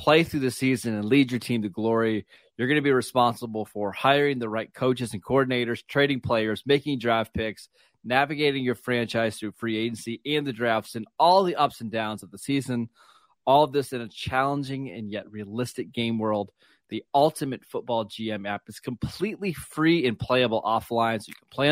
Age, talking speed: 20-39, 195 wpm